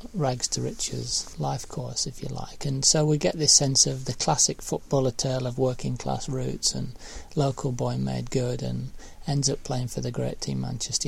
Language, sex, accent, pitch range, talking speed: English, male, British, 120-160 Hz, 200 wpm